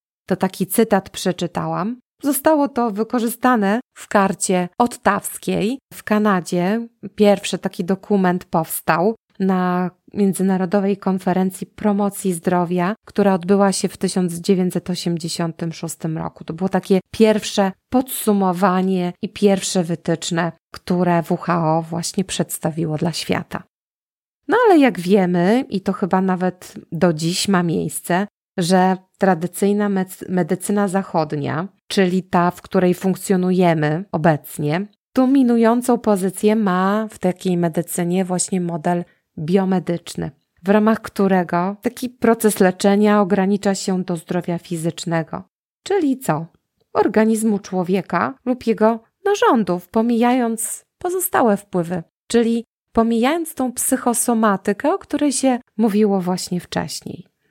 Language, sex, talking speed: Polish, female, 105 wpm